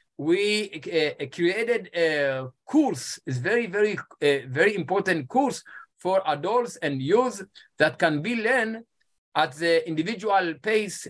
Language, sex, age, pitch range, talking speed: English, male, 50-69, 160-225 Hz, 130 wpm